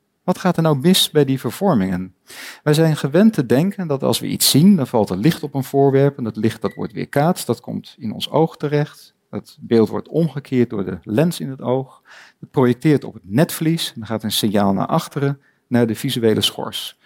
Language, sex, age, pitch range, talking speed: Dutch, male, 50-69, 125-165 Hz, 220 wpm